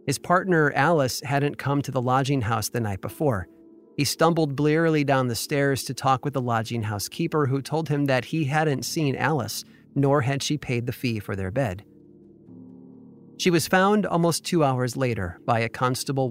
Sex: male